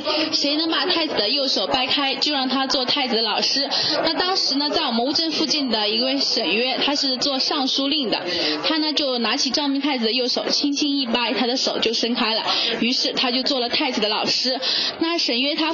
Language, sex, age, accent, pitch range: Chinese, female, 10-29, native, 245-305 Hz